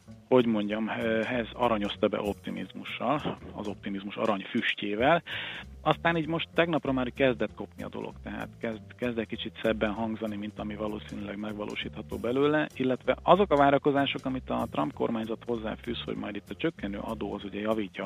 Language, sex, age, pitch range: Hungarian, male, 40-59, 105-130 Hz